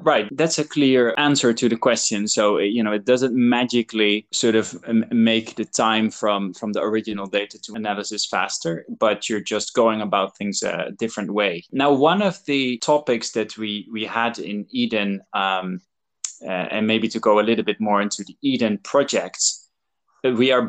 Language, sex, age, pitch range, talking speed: English, male, 20-39, 105-120 Hz, 185 wpm